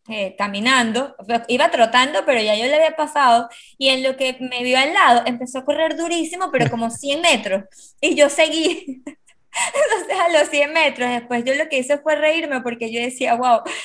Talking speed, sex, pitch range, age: 200 wpm, female, 235-290 Hz, 20-39